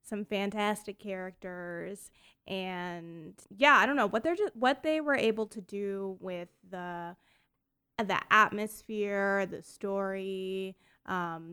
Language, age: English, 20-39